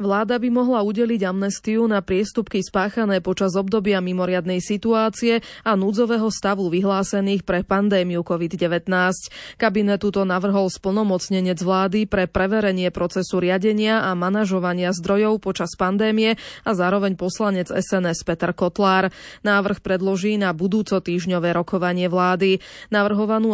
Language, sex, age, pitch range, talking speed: Slovak, female, 20-39, 180-215 Hz, 120 wpm